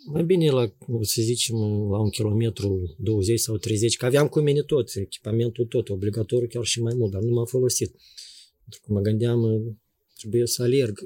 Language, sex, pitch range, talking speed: Romanian, male, 110-135 Hz, 185 wpm